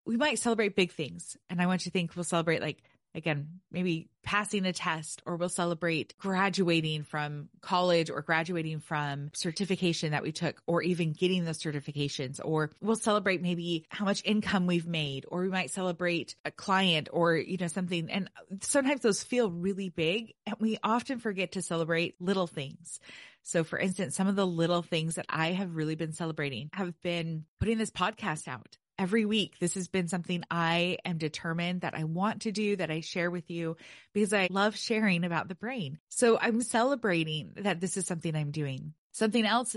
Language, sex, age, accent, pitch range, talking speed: English, female, 20-39, American, 165-195 Hz, 190 wpm